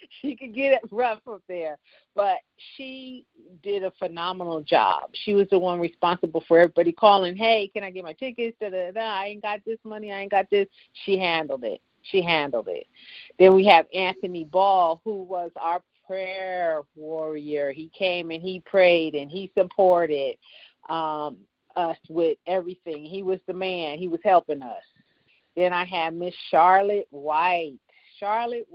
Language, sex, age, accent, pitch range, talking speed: English, female, 40-59, American, 170-215 Hz, 165 wpm